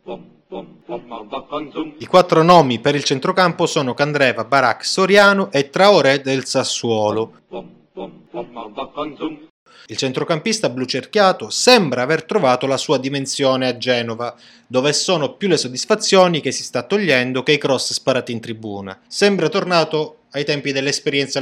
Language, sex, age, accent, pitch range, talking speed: Italian, male, 30-49, native, 120-155 Hz, 125 wpm